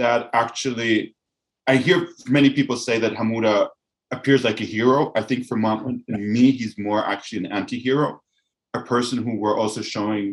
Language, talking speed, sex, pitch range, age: English, 170 wpm, male, 110-130 Hz, 30-49